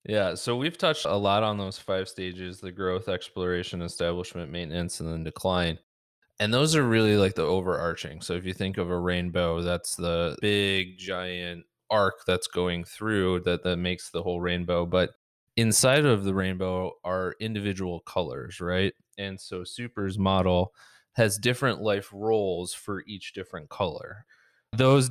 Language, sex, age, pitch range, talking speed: English, male, 20-39, 90-110 Hz, 160 wpm